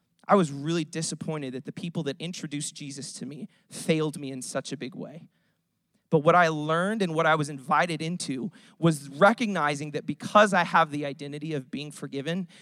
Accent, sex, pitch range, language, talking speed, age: American, male, 155-195 Hz, English, 190 wpm, 20-39